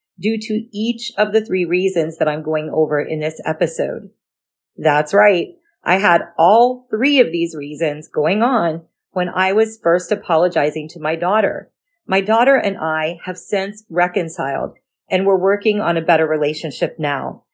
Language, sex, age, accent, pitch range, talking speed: English, female, 40-59, American, 165-220 Hz, 165 wpm